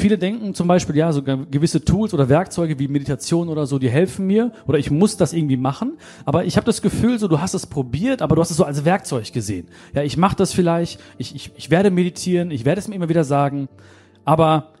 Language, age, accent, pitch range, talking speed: German, 40-59, German, 140-190 Hz, 240 wpm